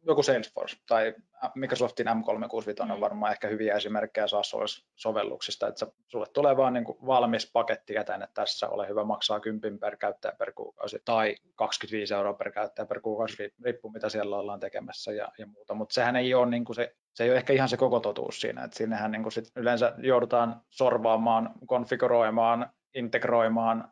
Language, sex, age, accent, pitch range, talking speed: Finnish, male, 20-39, native, 110-120 Hz, 150 wpm